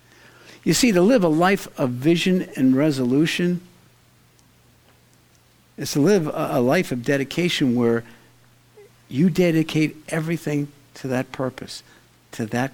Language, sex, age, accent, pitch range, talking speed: English, male, 60-79, American, 130-175 Hz, 120 wpm